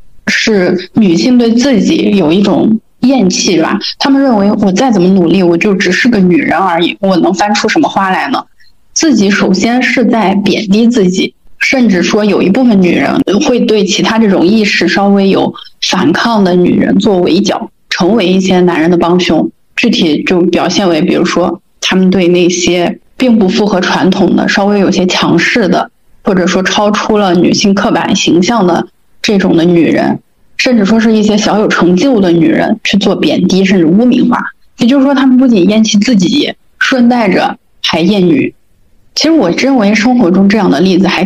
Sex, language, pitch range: female, Chinese, 180-225 Hz